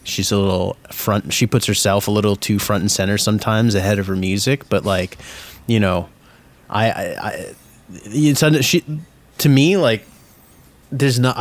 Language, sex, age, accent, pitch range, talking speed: English, male, 30-49, American, 100-115 Hz, 170 wpm